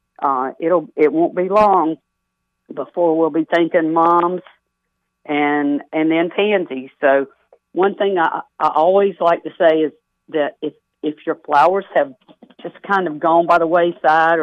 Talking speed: 160 wpm